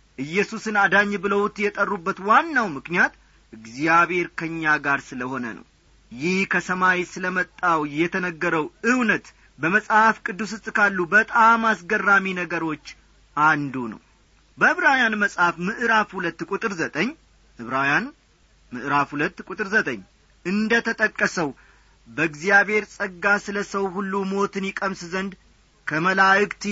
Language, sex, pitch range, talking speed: Amharic, male, 165-215 Hz, 100 wpm